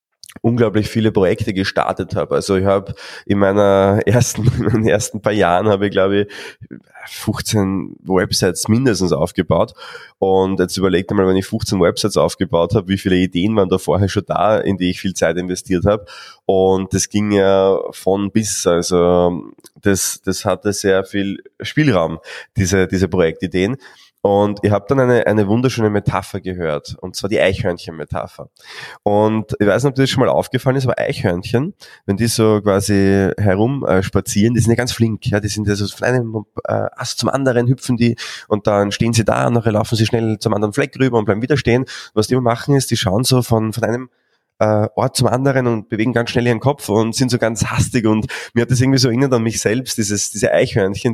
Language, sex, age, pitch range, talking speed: German, male, 20-39, 100-125 Hz, 200 wpm